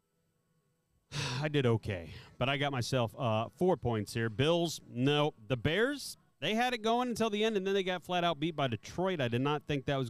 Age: 40-59